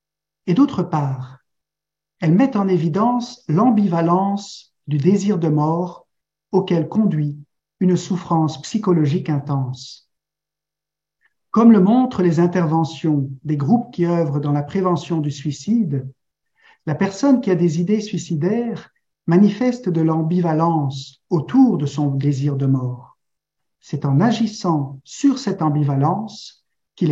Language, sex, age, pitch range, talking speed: French, male, 50-69, 150-205 Hz, 120 wpm